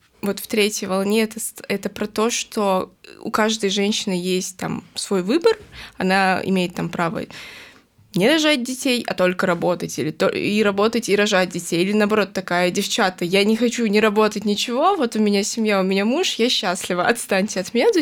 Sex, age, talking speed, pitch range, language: female, 20-39, 185 wpm, 190-230 Hz, Russian